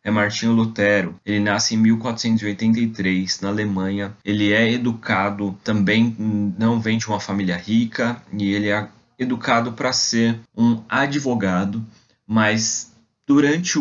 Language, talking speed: Portuguese, 125 wpm